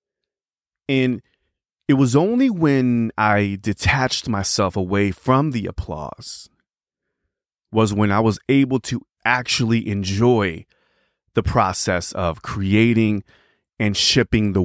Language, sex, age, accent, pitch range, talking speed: English, male, 30-49, American, 100-135 Hz, 110 wpm